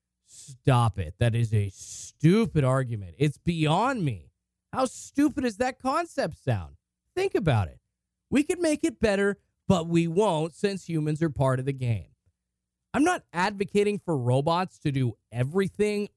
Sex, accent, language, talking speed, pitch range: male, American, English, 155 wpm, 145-215 Hz